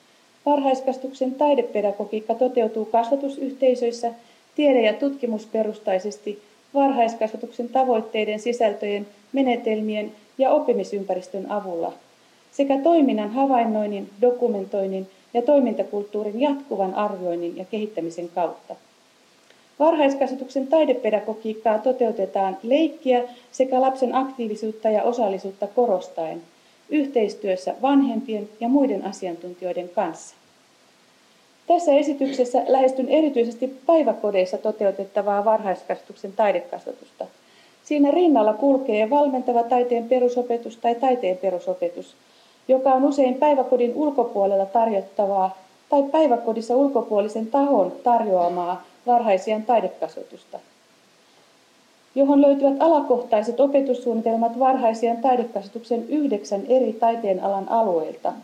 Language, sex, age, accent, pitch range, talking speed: Finnish, female, 30-49, native, 210-265 Hz, 85 wpm